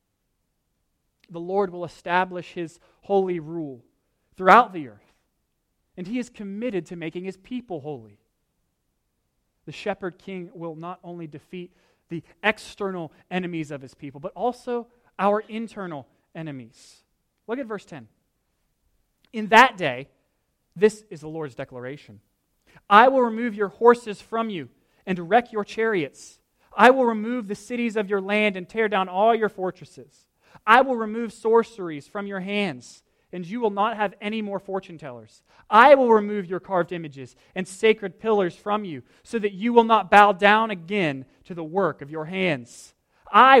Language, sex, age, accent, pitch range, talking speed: English, male, 30-49, American, 150-215 Hz, 160 wpm